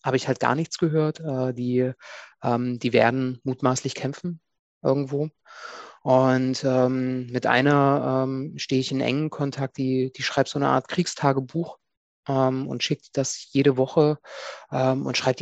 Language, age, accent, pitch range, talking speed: German, 30-49, German, 120-135 Hz, 130 wpm